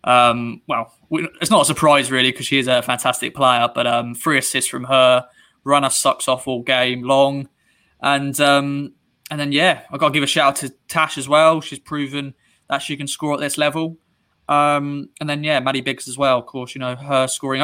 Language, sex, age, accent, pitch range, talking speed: English, male, 20-39, British, 130-155 Hz, 220 wpm